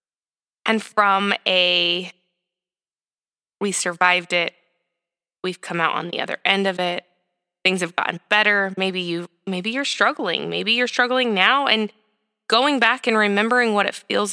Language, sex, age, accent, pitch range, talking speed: English, female, 20-39, American, 185-230 Hz, 150 wpm